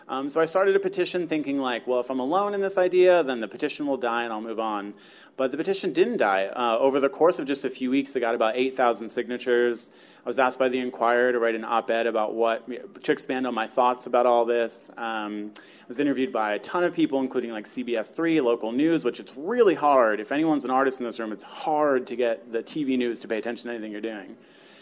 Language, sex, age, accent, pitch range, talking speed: English, male, 30-49, American, 115-135 Hz, 245 wpm